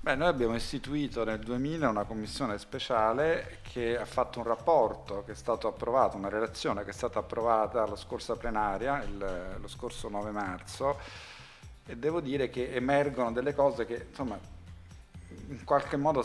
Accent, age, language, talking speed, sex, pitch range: native, 40-59, Italian, 165 wpm, male, 105-130 Hz